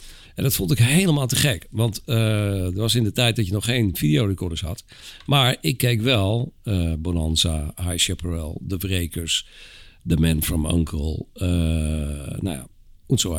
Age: 50-69